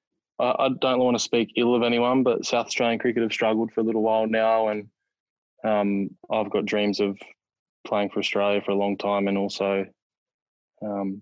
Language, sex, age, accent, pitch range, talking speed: English, male, 20-39, Australian, 100-105 Hz, 185 wpm